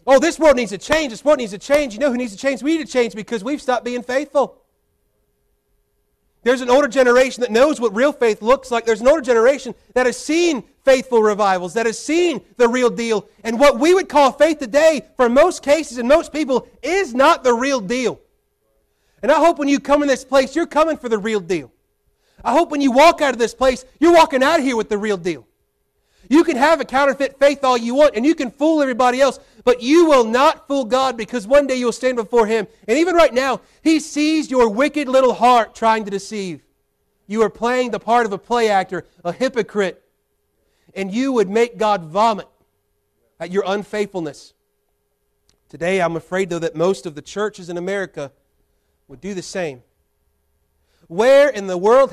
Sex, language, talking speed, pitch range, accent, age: male, English, 210 wpm, 205-285 Hz, American, 40-59